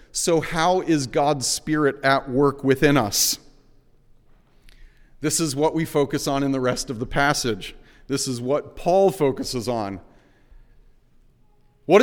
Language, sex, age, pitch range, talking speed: English, male, 40-59, 130-160 Hz, 140 wpm